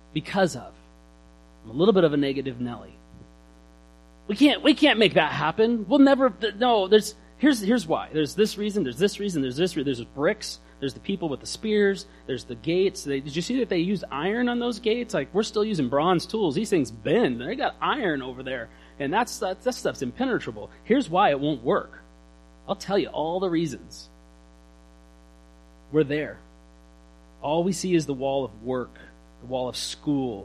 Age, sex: 30-49, male